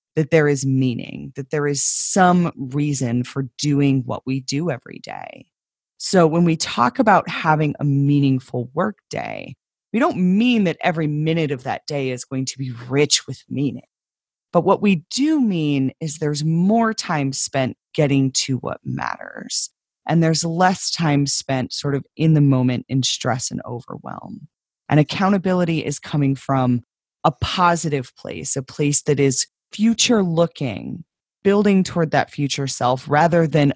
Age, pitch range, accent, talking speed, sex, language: 30-49, 135-175 Hz, American, 160 wpm, female, English